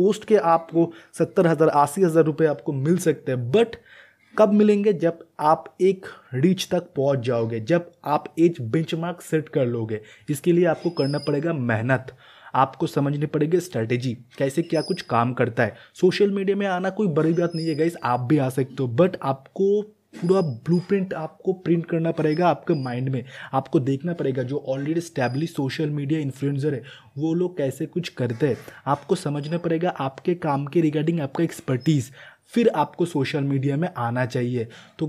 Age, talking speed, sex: 20-39, 180 wpm, male